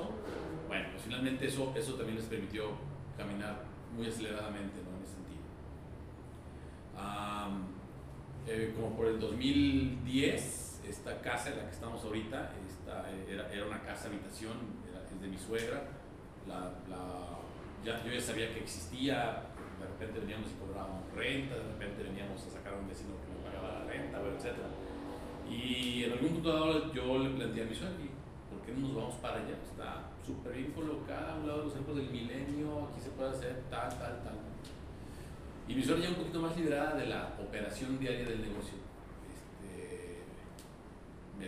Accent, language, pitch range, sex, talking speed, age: Mexican, Spanish, 95-125 Hz, male, 170 wpm, 40-59